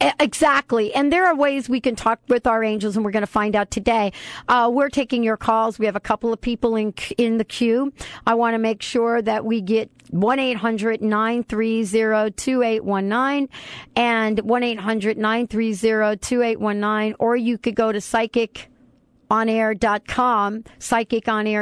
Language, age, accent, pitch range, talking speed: English, 50-69, American, 195-235 Hz, 185 wpm